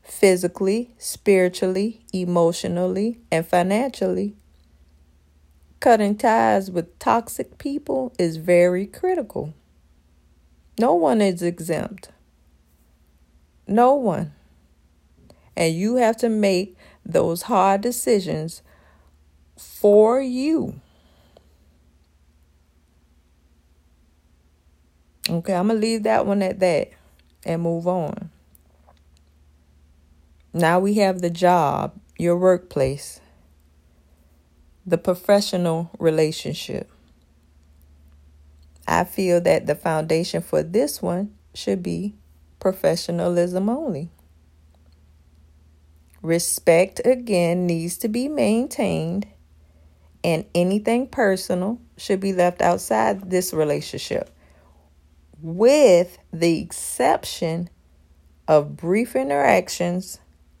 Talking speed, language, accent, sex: 85 wpm, English, American, female